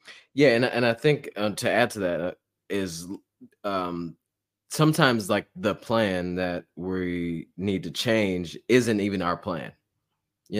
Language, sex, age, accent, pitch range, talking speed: English, male, 20-39, American, 95-115 Hz, 155 wpm